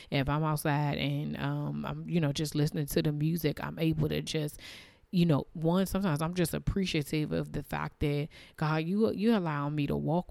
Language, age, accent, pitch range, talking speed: English, 20-39, American, 145-170 Hz, 205 wpm